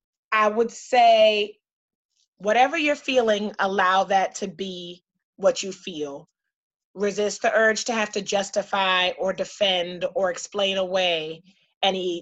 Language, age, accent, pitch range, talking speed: English, 30-49, American, 180-220 Hz, 130 wpm